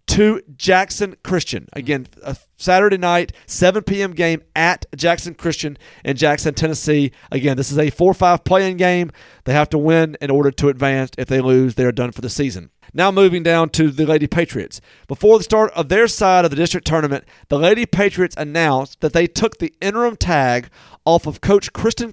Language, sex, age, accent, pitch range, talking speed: English, male, 40-59, American, 145-185 Hz, 195 wpm